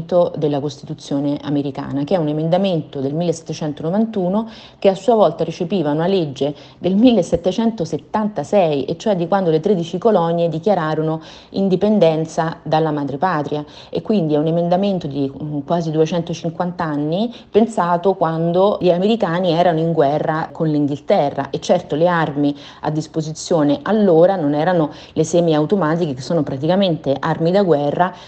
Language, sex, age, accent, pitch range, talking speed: Italian, female, 30-49, native, 150-185 Hz, 135 wpm